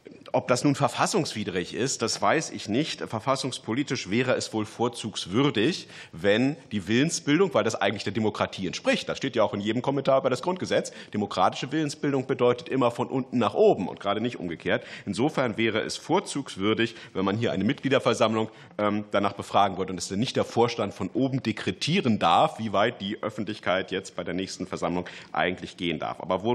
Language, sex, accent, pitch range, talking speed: German, male, German, 100-135 Hz, 180 wpm